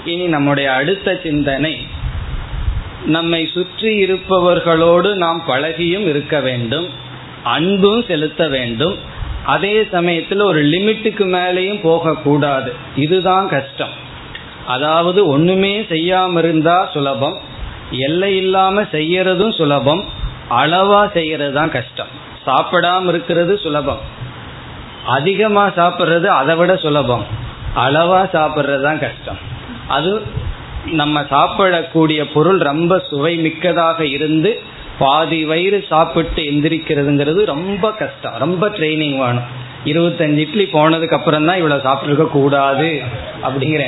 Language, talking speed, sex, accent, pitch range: Tamil, 95 wpm, male, native, 135-180 Hz